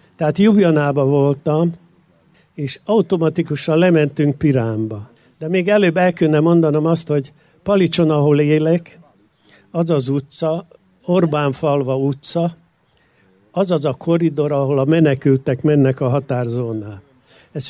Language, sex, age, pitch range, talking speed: Hungarian, male, 60-79, 135-165 Hz, 110 wpm